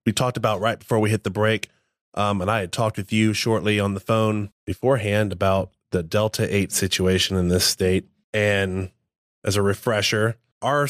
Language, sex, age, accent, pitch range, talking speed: English, male, 20-39, American, 95-115 Hz, 180 wpm